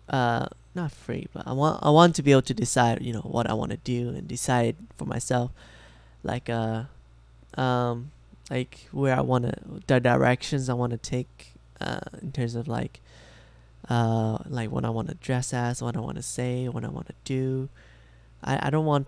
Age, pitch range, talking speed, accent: 10-29, 115-140 Hz, 185 wpm, American